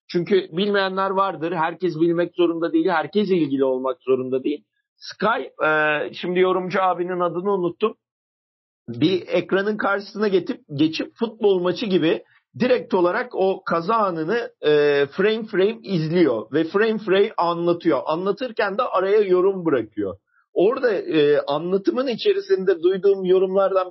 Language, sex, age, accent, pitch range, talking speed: Turkish, male, 50-69, native, 165-215 Hz, 120 wpm